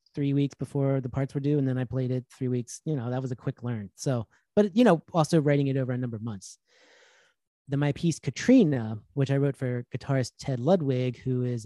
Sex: male